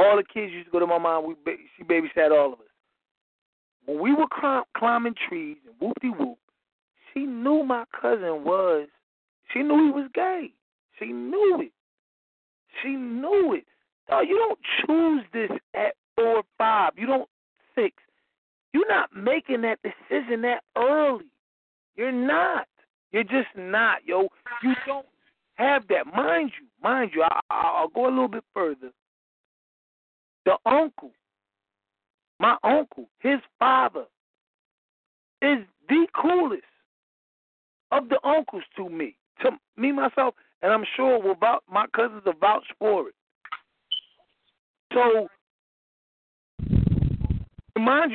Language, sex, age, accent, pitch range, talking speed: English, male, 40-59, American, 190-290 Hz, 140 wpm